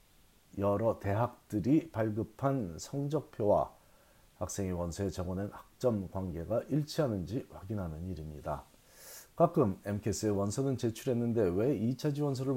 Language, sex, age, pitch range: Korean, male, 40-59, 100-135 Hz